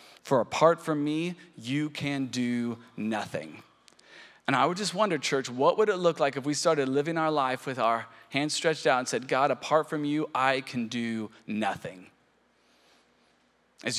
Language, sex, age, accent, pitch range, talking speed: English, male, 20-39, American, 130-160 Hz, 175 wpm